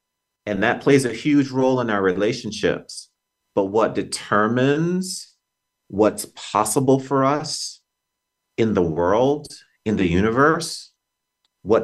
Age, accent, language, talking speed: 40-59, American, English, 115 wpm